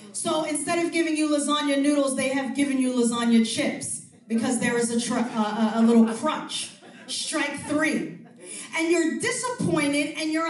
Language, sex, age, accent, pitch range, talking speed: English, female, 40-59, American, 280-380 Hz, 165 wpm